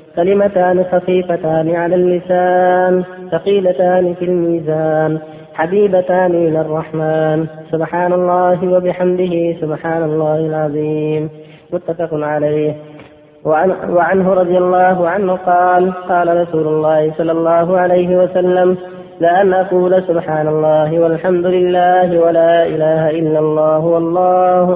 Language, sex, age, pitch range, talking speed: Arabic, female, 20-39, 155-180 Hz, 100 wpm